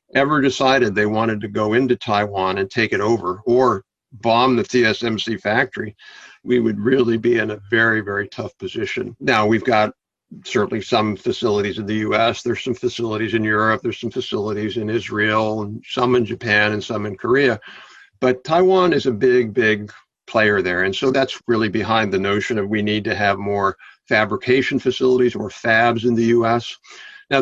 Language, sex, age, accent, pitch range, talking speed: English, male, 60-79, American, 105-125 Hz, 180 wpm